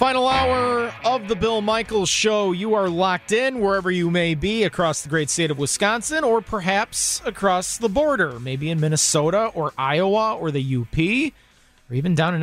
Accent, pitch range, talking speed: American, 150-195 Hz, 185 wpm